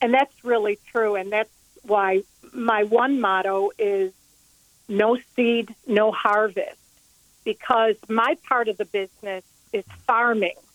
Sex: female